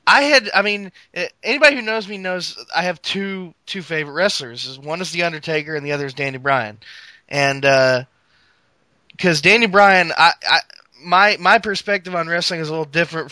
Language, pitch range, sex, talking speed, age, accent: English, 140-185 Hz, male, 185 wpm, 20-39, American